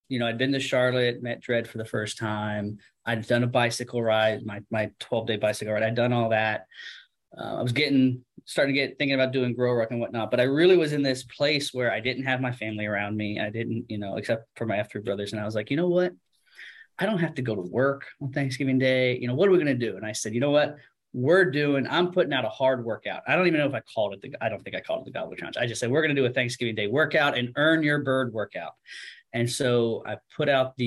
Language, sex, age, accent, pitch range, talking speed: English, male, 20-39, American, 110-135 Hz, 275 wpm